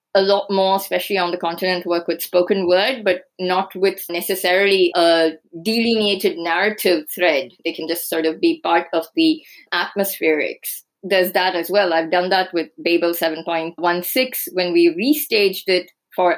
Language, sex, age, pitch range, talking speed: English, female, 20-39, 170-205 Hz, 160 wpm